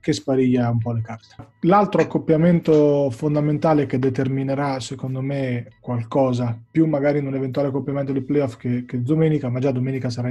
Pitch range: 125-150 Hz